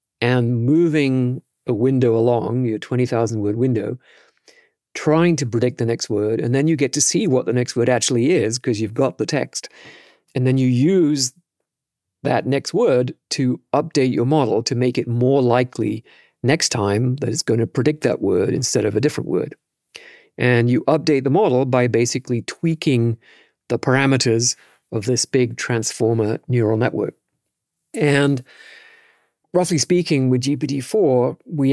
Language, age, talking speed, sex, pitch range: English, 40-59, 160 wpm, male, 115-140 Hz